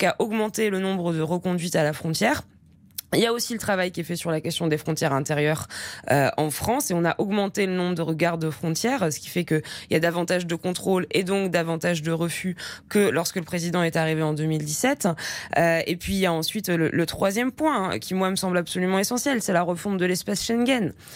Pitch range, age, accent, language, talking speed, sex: 170-205 Hz, 20-39, French, French, 235 wpm, female